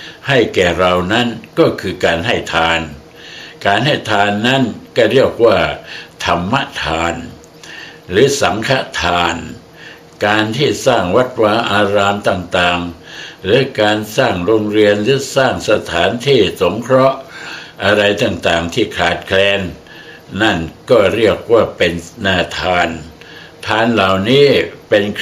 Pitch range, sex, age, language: 90-115 Hz, male, 60-79, Thai